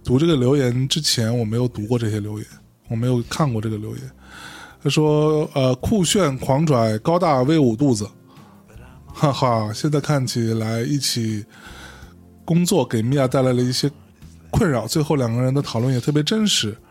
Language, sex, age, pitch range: Chinese, male, 20-39, 110-145 Hz